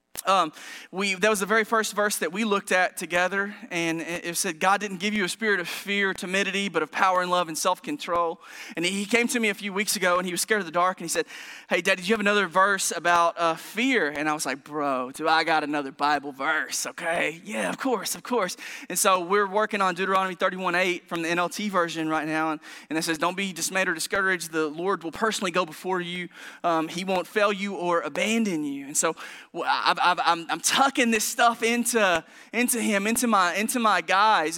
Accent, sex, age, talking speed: American, male, 20-39, 230 wpm